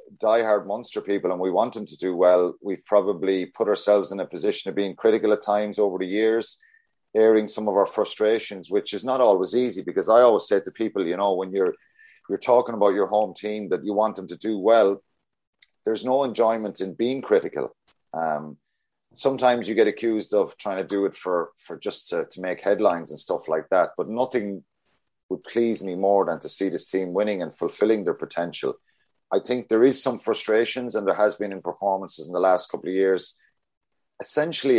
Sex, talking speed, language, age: male, 205 wpm, English, 30-49